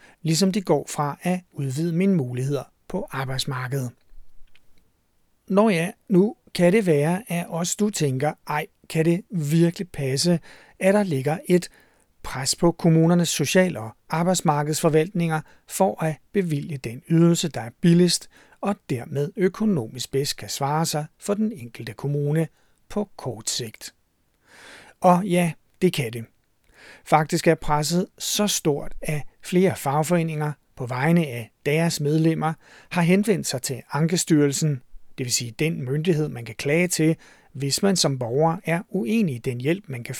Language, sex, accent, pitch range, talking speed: Danish, male, native, 145-185 Hz, 150 wpm